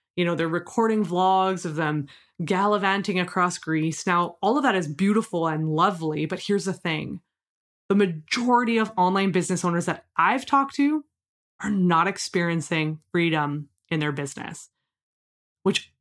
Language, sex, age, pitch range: English, female, 20-39, 170-220 Hz